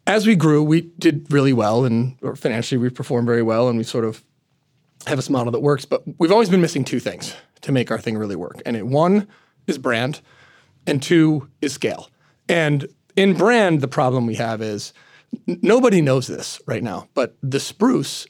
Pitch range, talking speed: 120-165 Hz, 195 wpm